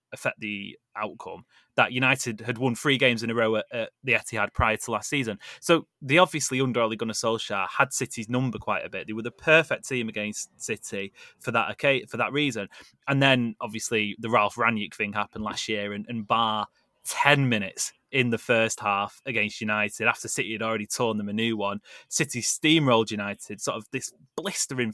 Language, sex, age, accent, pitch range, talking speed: English, male, 20-39, British, 110-145 Hz, 200 wpm